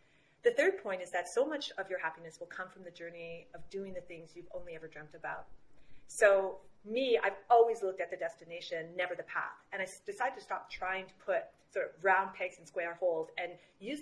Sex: female